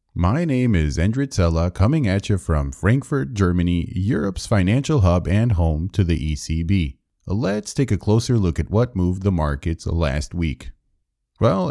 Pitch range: 90-130 Hz